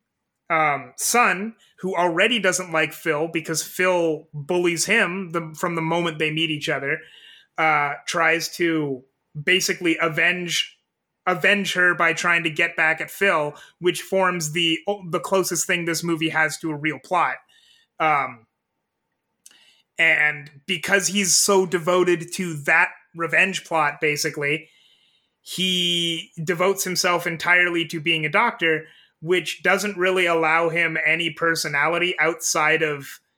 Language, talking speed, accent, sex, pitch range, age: English, 135 wpm, American, male, 160-190 Hz, 30-49